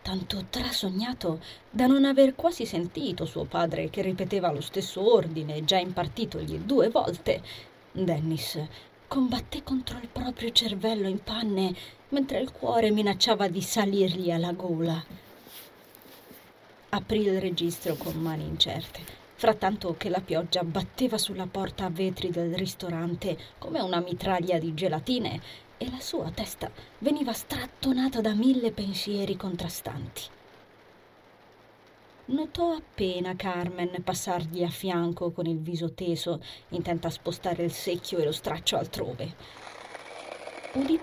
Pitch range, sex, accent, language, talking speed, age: 170-215 Hz, female, native, Italian, 125 wpm, 30-49